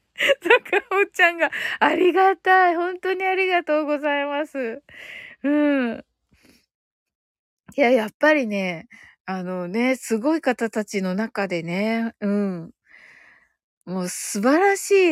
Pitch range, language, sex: 205-315 Hz, Japanese, female